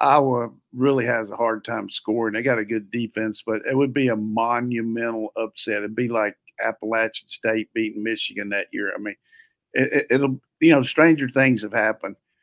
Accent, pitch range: American, 115-135 Hz